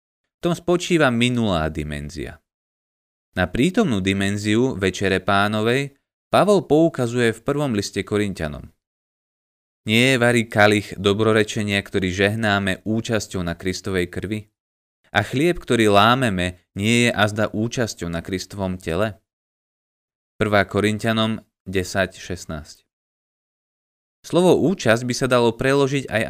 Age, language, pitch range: 20-39, Slovak, 90-125 Hz